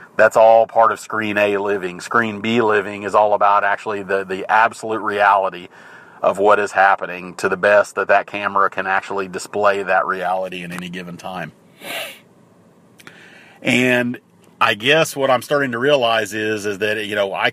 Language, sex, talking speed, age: English, male, 175 wpm, 40-59